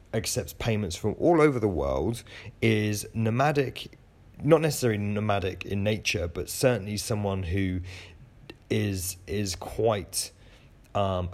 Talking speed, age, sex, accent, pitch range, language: 115 wpm, 30-49, male, British, 90-115 Hz, English